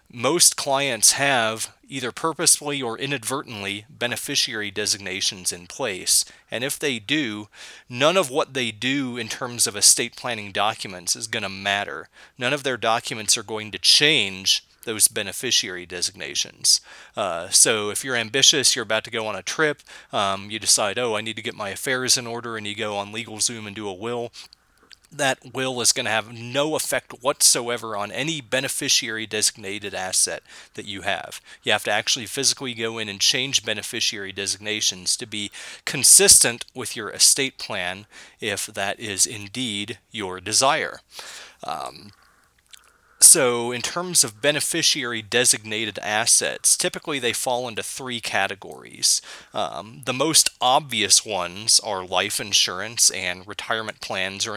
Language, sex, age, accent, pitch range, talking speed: English, male, 30-49, American, 105-130 Hz, 155 wpm